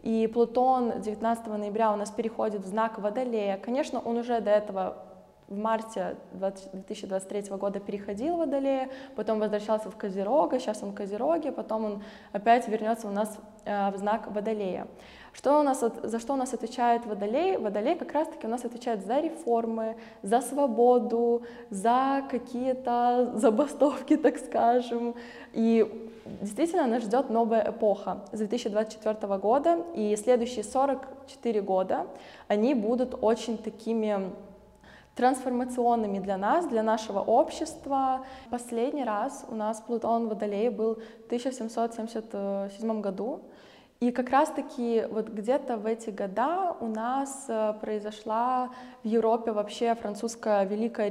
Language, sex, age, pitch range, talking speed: Russian, female, 20-39, 215-250 Hz, 130 wpm